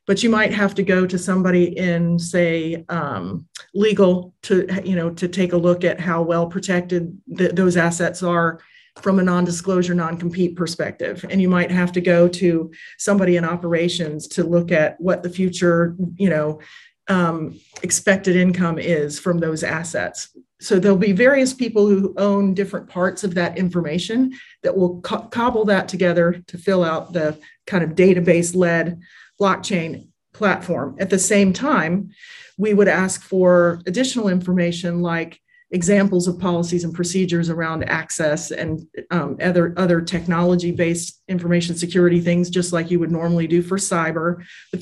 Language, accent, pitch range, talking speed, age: English, American, 170-190 Hz, 160 wpm, 40-59